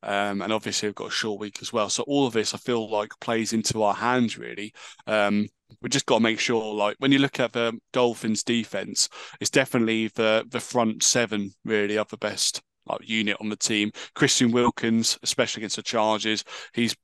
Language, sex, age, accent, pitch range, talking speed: English, male, 20-39, British, 105-120 Hz, 210 wpm